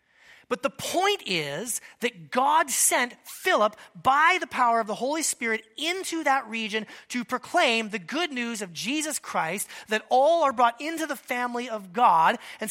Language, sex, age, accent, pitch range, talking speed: English, male, 30-49, American, 190-280 Hz, 170 wpm